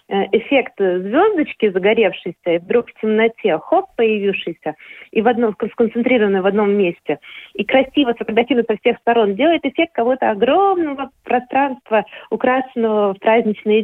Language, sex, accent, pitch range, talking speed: Russian, female, native, 210-270 Hz, 120 wpm